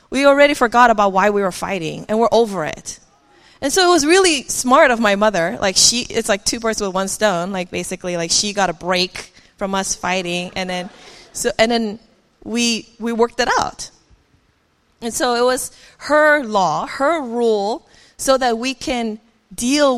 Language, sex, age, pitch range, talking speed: English, female, 20-39, 200-265 Hz, 190 wpm